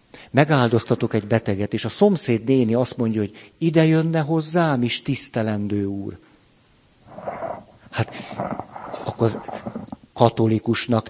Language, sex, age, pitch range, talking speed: Hungarian, male, 50-69, 110-155 Hz, 105 wpm